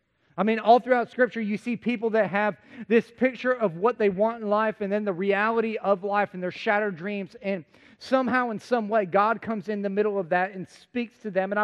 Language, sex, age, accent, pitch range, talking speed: English, male, 30-49, American, 190-220 Hz, 230 wpm